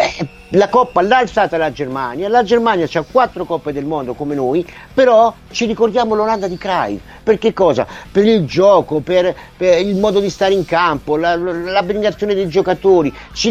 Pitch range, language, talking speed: 150-210 Hz, Italian, 190 wpm